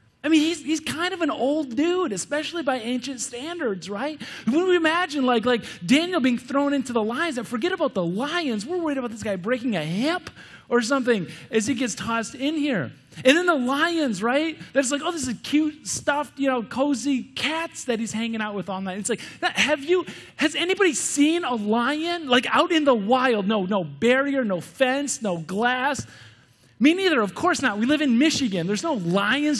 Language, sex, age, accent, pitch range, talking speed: English, male, 30-49, American, 205-290 Hz, 205 wpm